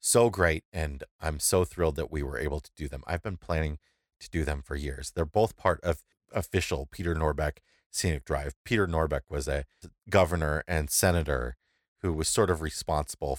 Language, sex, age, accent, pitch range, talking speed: English, male, 30-49, American, 80-100 Hz, 190 wpm